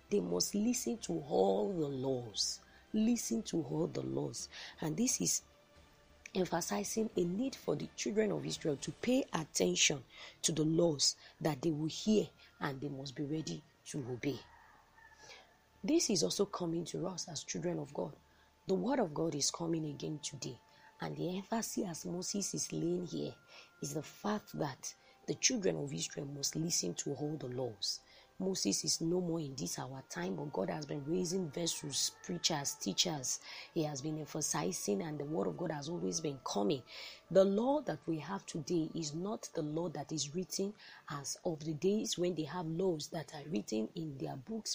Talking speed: 180 wpm